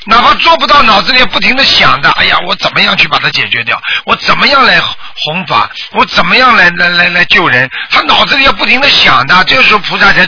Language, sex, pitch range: Chinese, male, 180-250 Hz